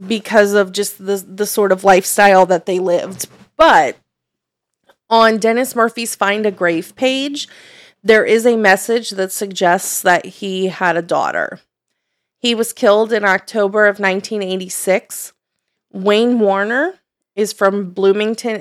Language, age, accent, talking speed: English, 30-49, American, 135 wpm